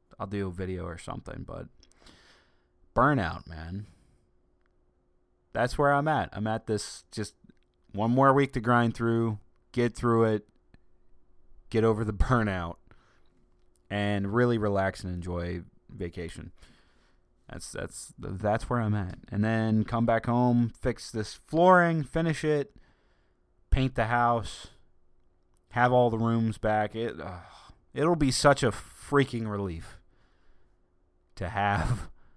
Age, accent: 20-39, American